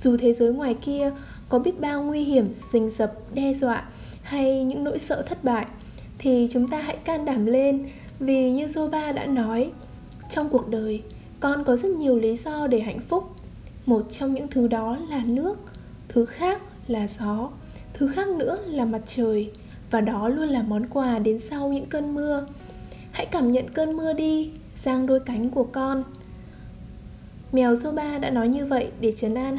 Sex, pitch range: female, 235-290 Hz